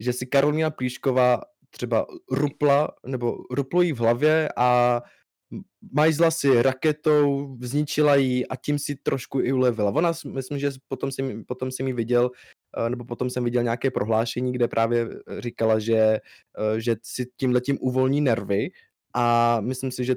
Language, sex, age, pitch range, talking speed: Czech, male, 20-39, 120-140 Hz, 145 wpm